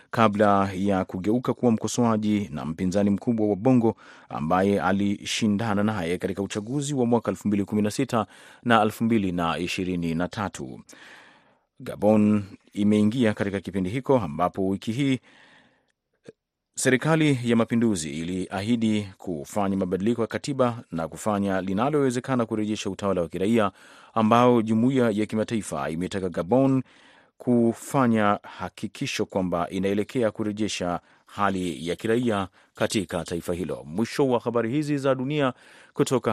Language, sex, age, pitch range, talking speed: Swahili, male, 30-49, 95-120 Hz, 110 wpm